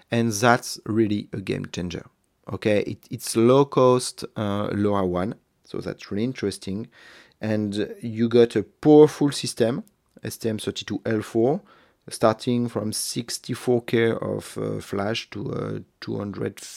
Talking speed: 145 wpm